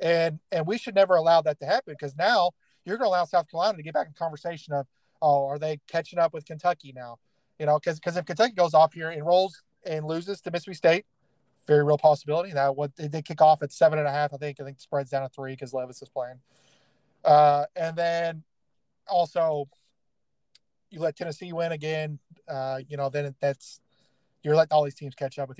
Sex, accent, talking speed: male, American, 225 wpm